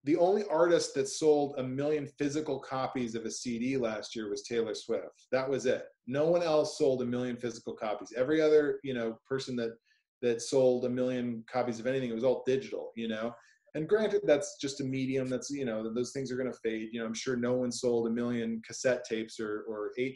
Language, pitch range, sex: English, 120-145 Hz, male